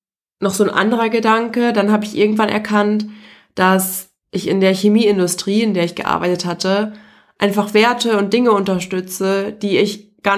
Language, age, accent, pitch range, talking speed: German, 20-39, German, 170-210 Hz, 160 wpm